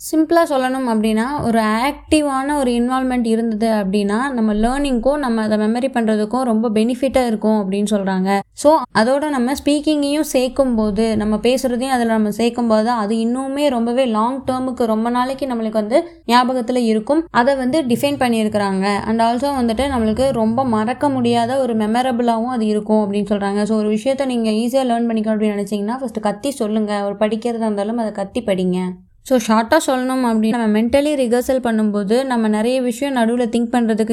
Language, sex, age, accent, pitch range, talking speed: Tamil, female, 20-39, native, 215-260 Hz, 160 wpm